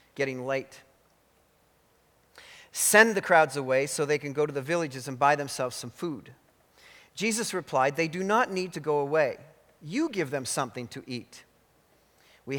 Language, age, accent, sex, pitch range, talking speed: English, 40-59, American, male, 140-170 Hz, 160 wpm